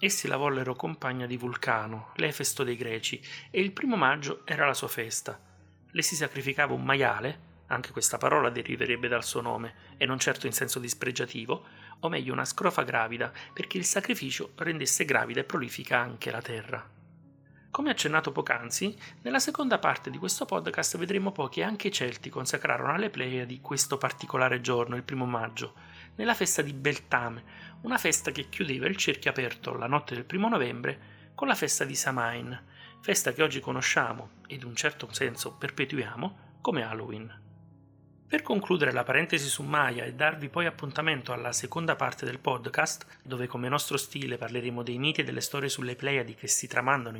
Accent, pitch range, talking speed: native, 125-165 Hz, 175 wpm